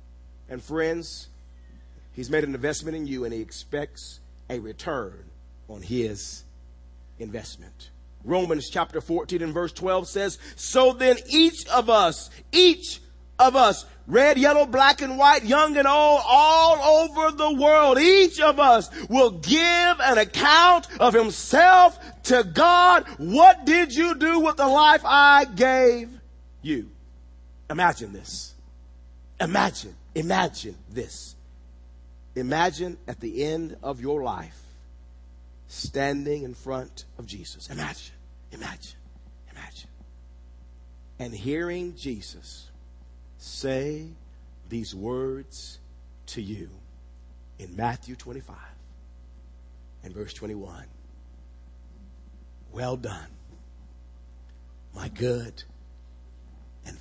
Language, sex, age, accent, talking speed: English, male, 40-59, American, 110 wpm